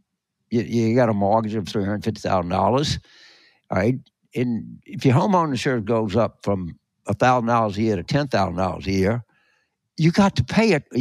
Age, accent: 60-79, American